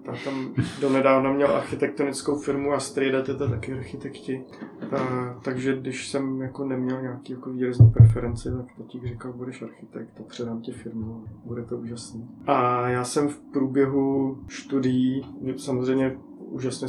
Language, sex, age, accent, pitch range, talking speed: Czech, male, 20-39, native, 120-130 Hz, 150 wpm